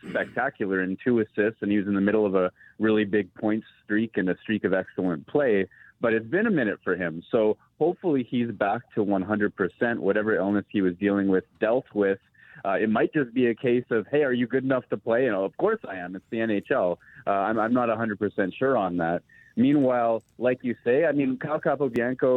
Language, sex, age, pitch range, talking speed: English, male, 30-49, 100-125 Hz, 225 wpm